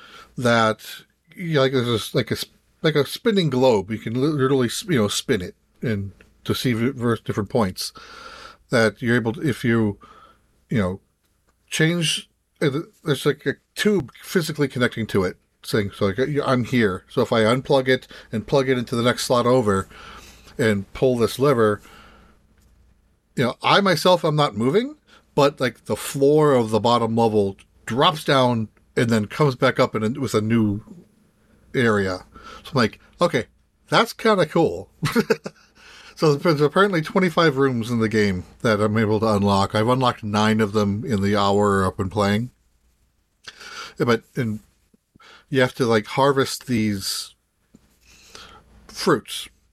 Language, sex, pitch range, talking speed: English, male, 105-140 Hz, 155 wpm